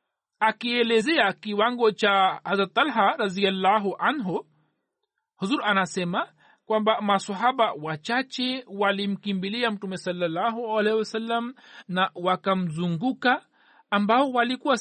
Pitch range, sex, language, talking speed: 195-235 Hz, male, Swahili, 80 wpm